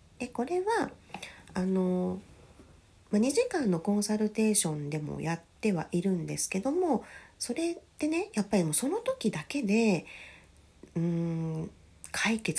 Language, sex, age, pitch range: Japanese, female, 40-59, 145-225 Hz